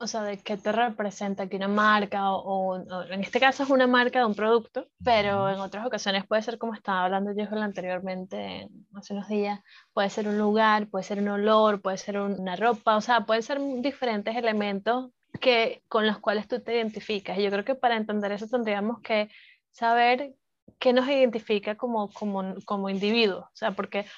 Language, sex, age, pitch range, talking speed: Spanish, female, 10-29, 205-245 Hz, 200 wpm